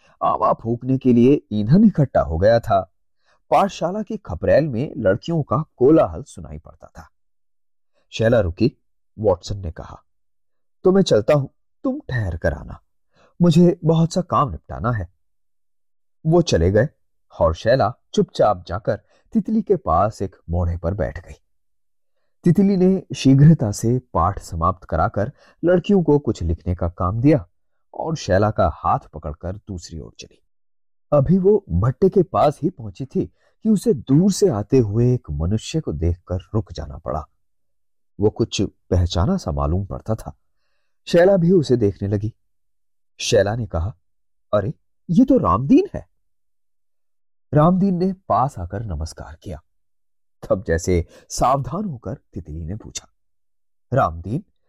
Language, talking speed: Hindi, 145 wpm